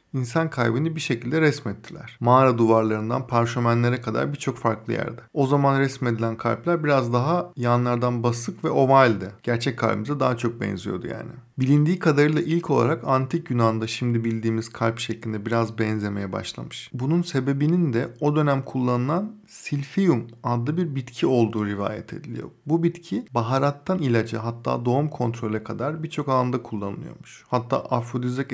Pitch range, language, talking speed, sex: 115-145 Hz, Turkish, 140 wpm, male